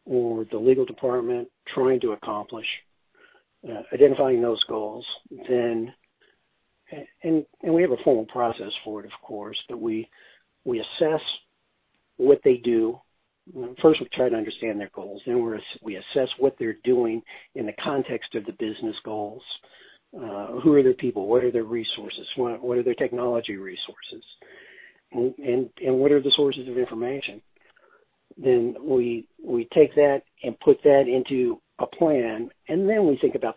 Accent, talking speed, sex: American, 165 wpm, male